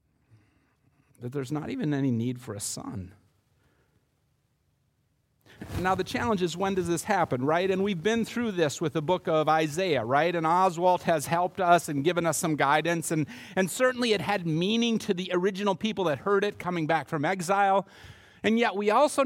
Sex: male